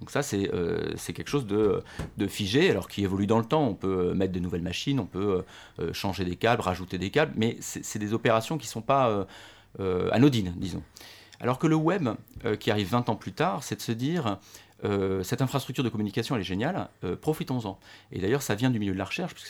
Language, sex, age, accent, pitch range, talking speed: French, male, 40-59, French, 100-125 Hz, 235 wpm